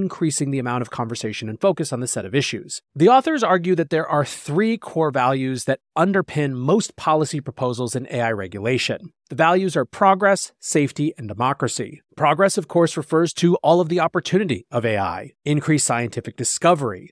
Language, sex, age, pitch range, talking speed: English, male, 30-49, 125-175 Hz, 175 wpm